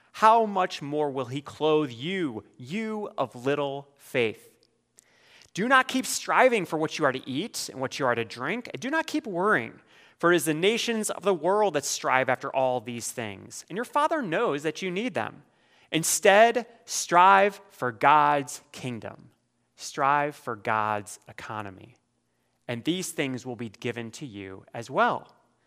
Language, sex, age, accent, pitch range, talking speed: English, male, 30-49, American, 115-170 Hz, 170 wpm